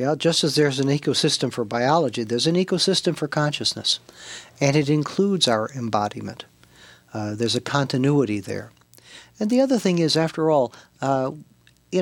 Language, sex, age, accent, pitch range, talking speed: English, male, 60-79, American, 120-165 Hz, 160 wpm